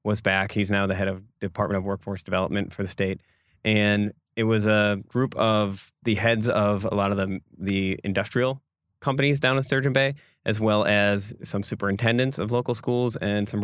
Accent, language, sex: American, English, male